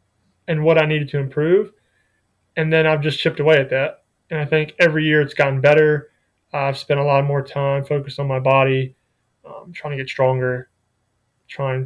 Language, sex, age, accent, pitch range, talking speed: English, male, 20-39, American, 130-155 Hz, 190 wpm